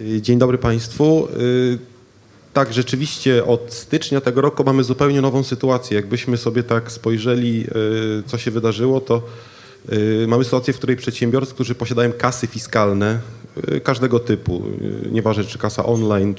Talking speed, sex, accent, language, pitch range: 130 wpm, male, native, Polish, 105-120 Hz